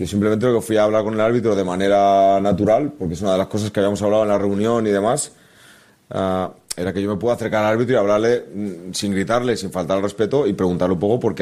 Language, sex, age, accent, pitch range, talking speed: Spanish, male, 30-49, Spanish, 95-110 Hz, 265 wpm